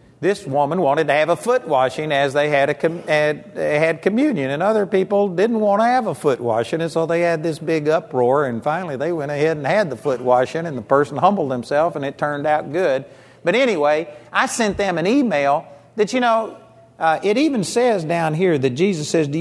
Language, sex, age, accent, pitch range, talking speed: English, male, 50-69, American, 145-195 Hz, 225 wpm